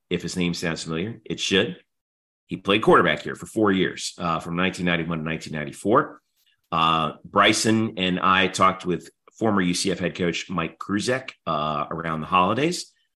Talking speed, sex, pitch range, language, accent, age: 160 wpm, male, 85-110 Hz, English, American, 40-59